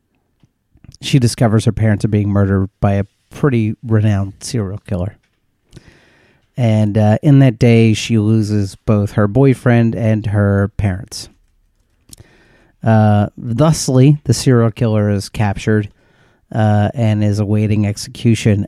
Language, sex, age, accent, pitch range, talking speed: English, male, 30-49, American, 105-120 Hz, 120 wpm